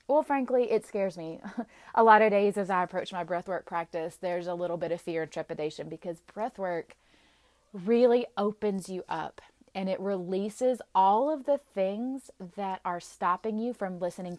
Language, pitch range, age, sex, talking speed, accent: English, 175-215 Hz, 30-49, female, 175 wpm, American